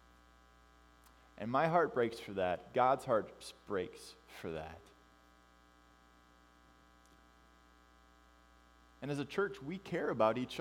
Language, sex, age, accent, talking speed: English, male, 20-39, American, 105 wpm